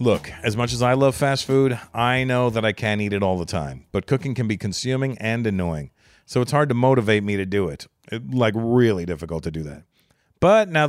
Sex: male